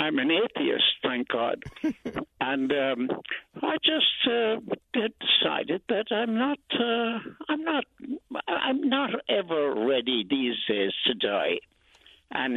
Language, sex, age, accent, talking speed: English, male, 60-79, American, 125 wpm